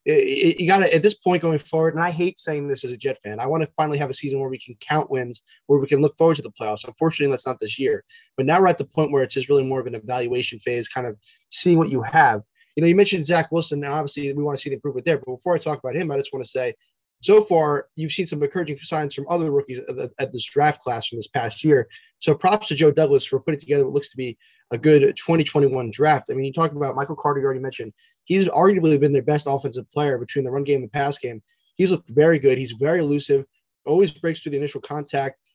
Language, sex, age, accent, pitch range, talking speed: English, male, 20-39, American, 135-165 Hz, 275 wpm